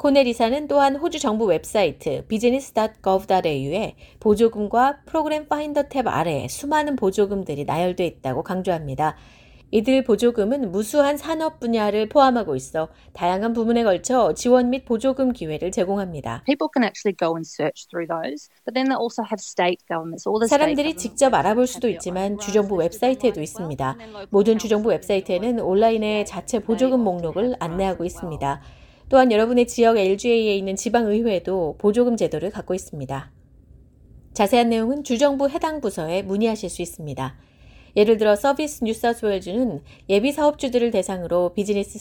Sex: female